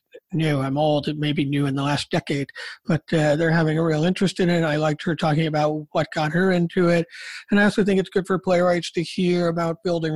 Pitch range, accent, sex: 160-195 Hz, American, male